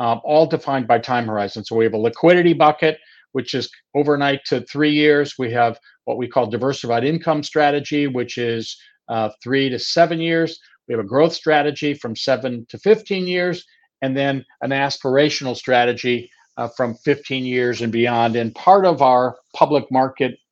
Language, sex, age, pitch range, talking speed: English, male, 50-69, 115-145 Hz, 175 wpm